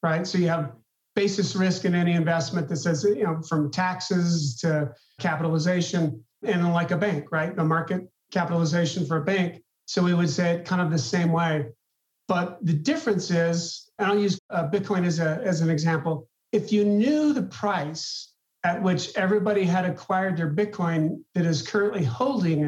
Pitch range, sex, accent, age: 165-190 Hz, male, American, 50-69